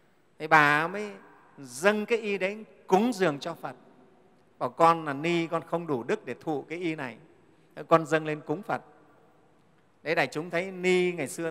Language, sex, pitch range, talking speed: Vietnamese, male, 145-190 Hz, 195 wpm